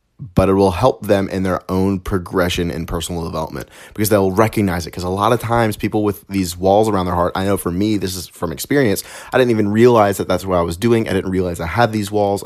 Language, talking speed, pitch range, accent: English, 255 wpm, 85-100 Hz, American